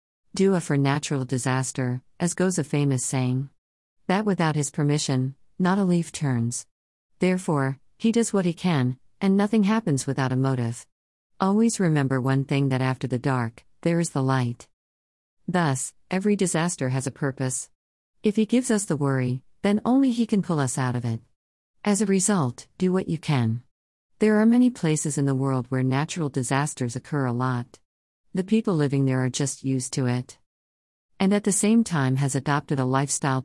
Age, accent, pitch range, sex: 50-69, American, 130-185 Hz, female